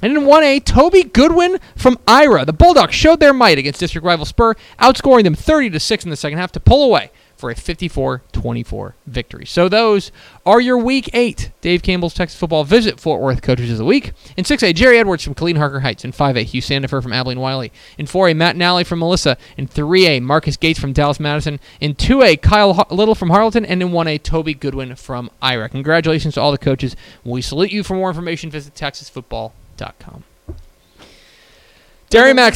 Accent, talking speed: American, 190 wpm